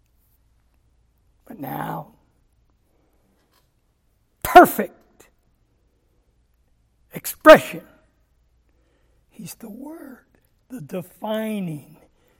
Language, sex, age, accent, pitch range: English, male, 60-79, American, 160-230 Hz